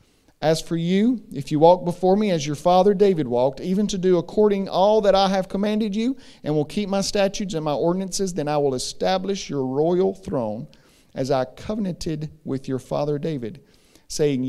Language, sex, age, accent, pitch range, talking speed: English, male, 40-59, American, 135-180 Hz, 190 wpm